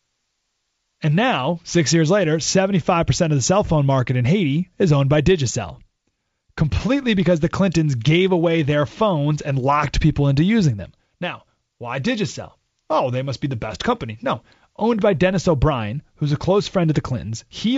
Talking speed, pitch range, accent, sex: 180 wpm, 130-190 Hz, American, male